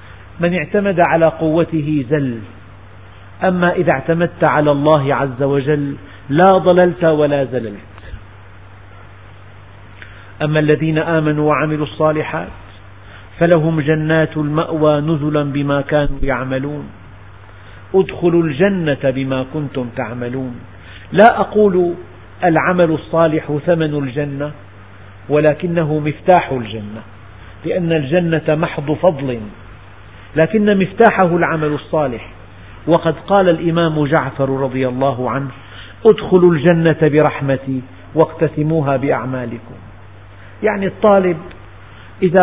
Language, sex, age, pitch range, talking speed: Arabic, male, 50-69, 110-170 Hz, 90 wpm